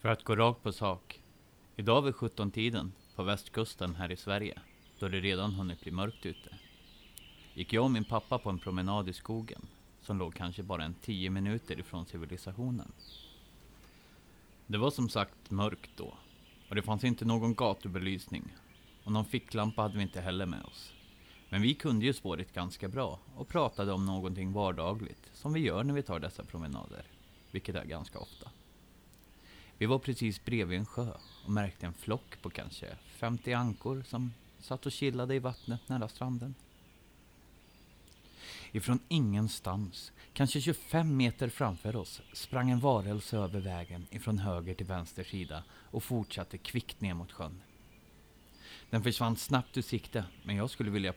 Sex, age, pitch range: male, 30-49, 90-115 Hz